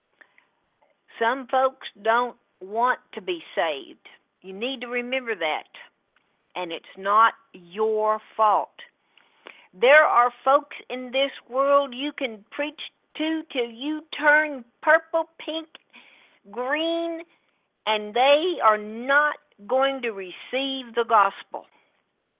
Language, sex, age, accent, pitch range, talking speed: English, female, 50-69, American, 215-280 Hz, 115 wpm